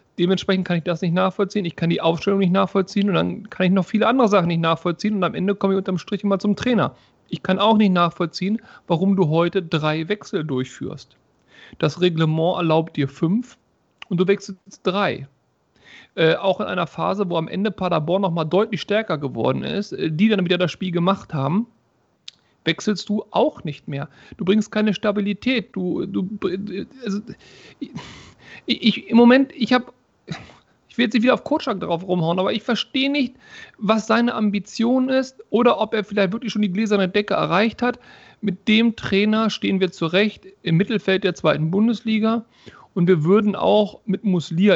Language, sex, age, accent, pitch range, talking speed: German, male, 40-59, German, 160-210 Hz, 180 wpm